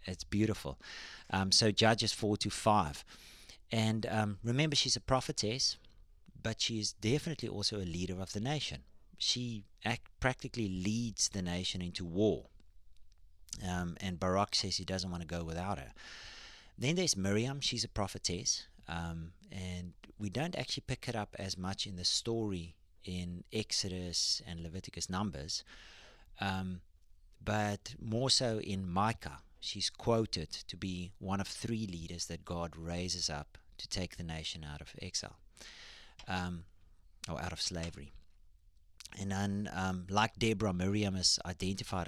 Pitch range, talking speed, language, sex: 85-105 Hz, 150 wpm, English, male